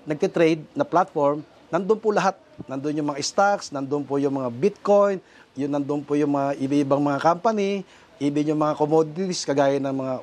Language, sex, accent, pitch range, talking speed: Filipino, male, native, 150-190 Hz, 175 wpm